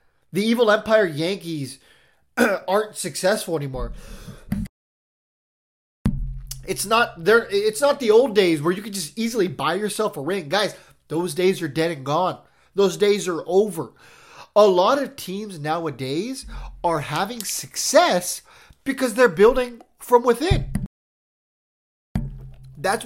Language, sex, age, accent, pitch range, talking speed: English, male, 30-49, American, 160-225 Hz, 125 wpm